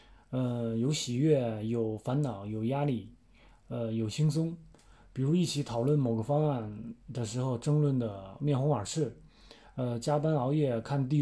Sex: male